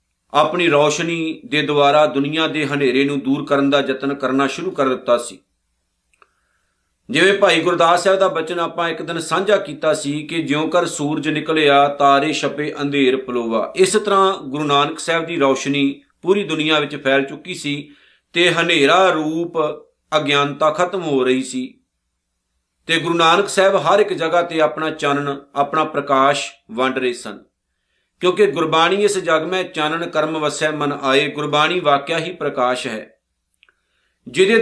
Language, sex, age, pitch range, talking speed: Punjabi, male, 50-69, 140-180 Hz, 135 wpm